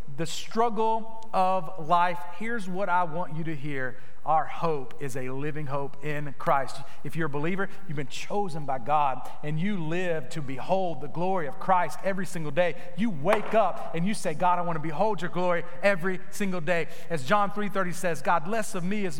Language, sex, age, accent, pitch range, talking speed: English, male, 40-59, American, 140-180 Hz, 205 wpm